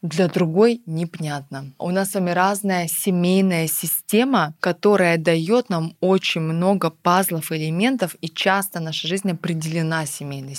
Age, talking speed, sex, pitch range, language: 20-39, 130 wpm, female, 165-195 Hz, Russian